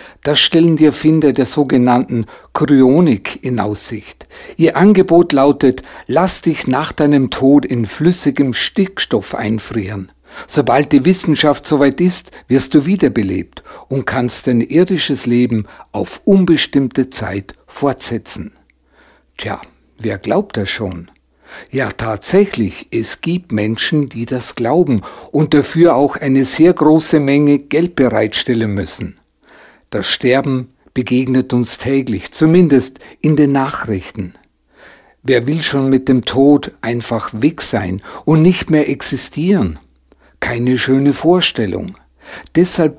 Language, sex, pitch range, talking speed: German, male, 115-150 Hz, 120 wpm